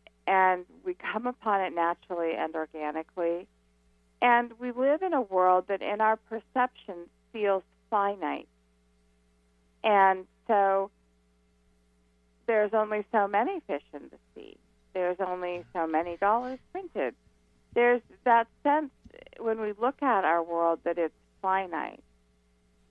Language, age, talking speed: English, 40-59, 125 wpm